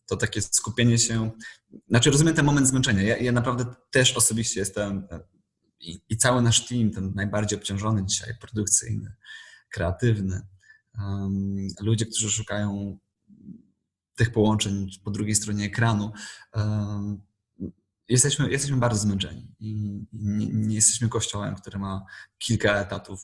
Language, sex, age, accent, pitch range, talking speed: Polish, male, 20-39, native, 105-115 Hz, 130 wpm